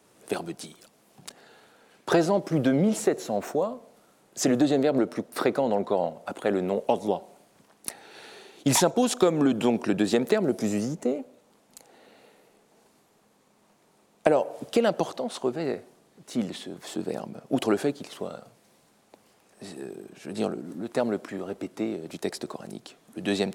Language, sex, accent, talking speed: French, male, French, 155 wpm